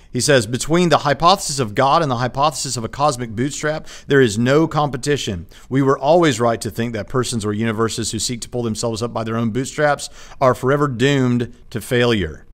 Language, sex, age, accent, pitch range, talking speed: English, male, 50-69, American, 115-140 Hz, 205 wpm